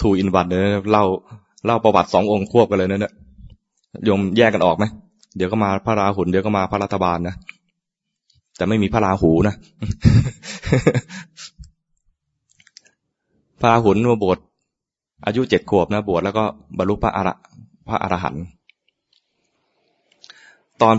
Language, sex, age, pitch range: English, male, 20-39, 95-120 Hz